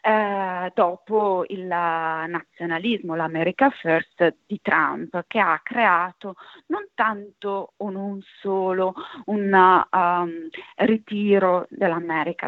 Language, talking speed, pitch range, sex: Italian, 85 wpm, 165-220 Hz, female